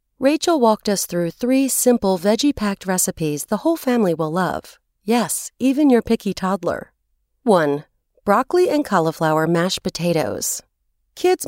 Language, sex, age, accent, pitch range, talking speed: English, female, 40-59, American, 170-245 Hz, 130 wpm